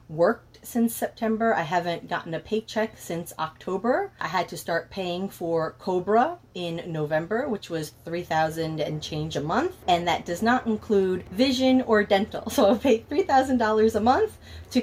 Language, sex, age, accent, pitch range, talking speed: English, female, 30-49, American, 170-220 Hz, 180 wpm